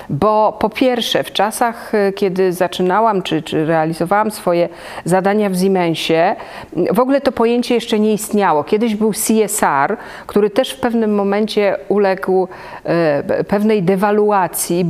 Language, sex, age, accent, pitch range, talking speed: Polish, female, 40-59, native, 185-225 Hz, 135 wpm